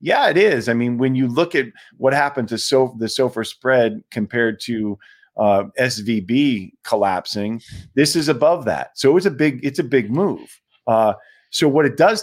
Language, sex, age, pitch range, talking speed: English, male, 40-59, 105-130 Hz, 190 wpm